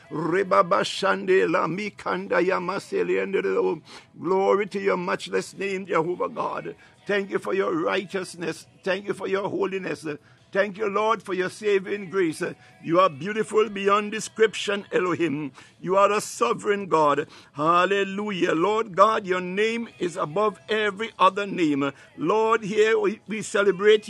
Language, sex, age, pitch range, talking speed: English, male, 60-79, 185-220 Hz, 130 wpm